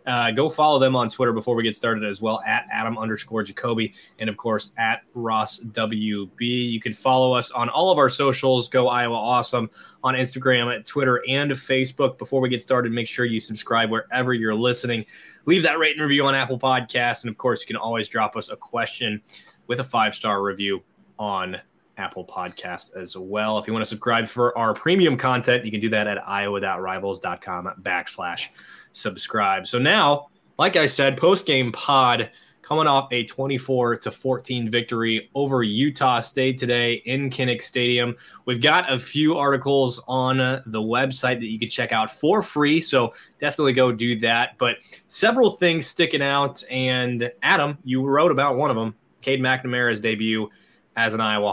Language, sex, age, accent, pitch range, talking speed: English, male, 20-39, American, 110-130 Hz, 180 wpm